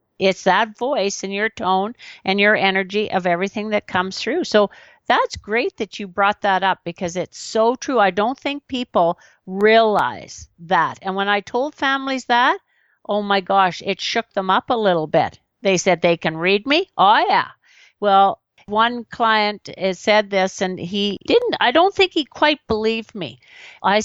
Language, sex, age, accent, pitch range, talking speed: English, female, 50-69, American, 195-250 Hz, 180 wpm